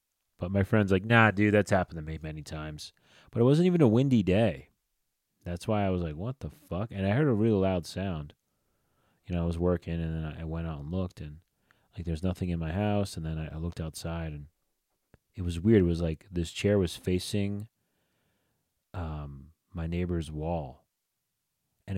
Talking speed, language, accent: 200 wpm, English, American